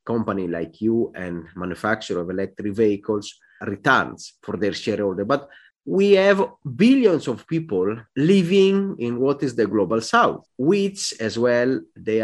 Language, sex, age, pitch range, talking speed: English, male, 30-49, 105-150 Hz, 140 wpm